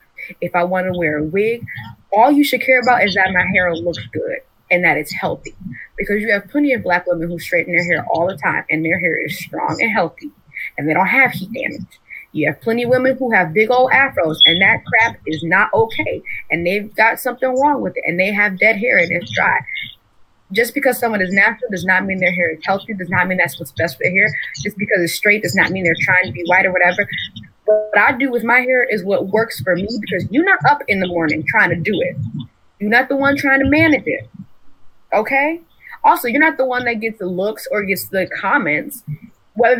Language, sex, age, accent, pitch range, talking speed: English, female, 20-39, American, 180-250 Hz, 240 wpm